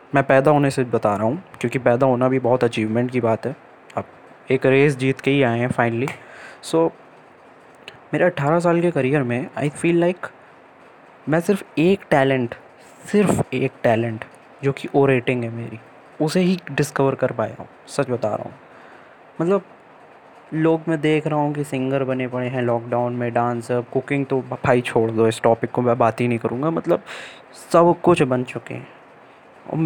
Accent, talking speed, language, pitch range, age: native, 185 wpm, Hindi, 120-155 Hz, 20-39